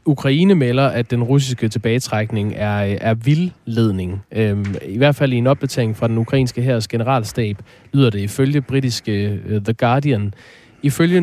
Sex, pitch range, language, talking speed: male, 110-140 Hz, Danish, 145 wpm